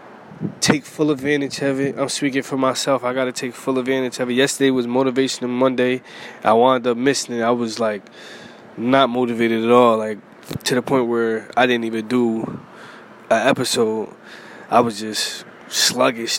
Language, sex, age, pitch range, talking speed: English, male, 20-39, 125-140 Hz, 175 wpm